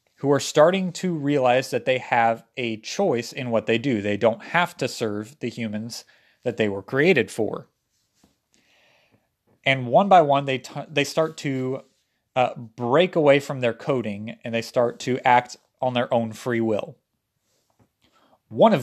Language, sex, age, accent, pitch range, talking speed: English, male, 30-49, American, 115-140 Hz, 170 wpm